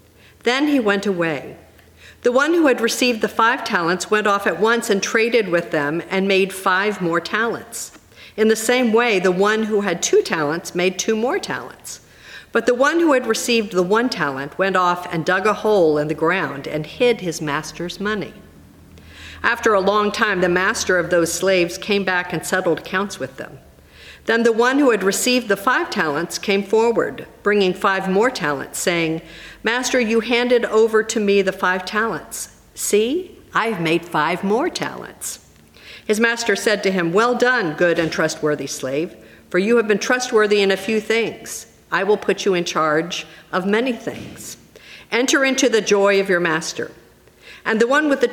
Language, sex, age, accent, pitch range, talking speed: English, female, 50-69, American, 175-230 Hz, 185 wpm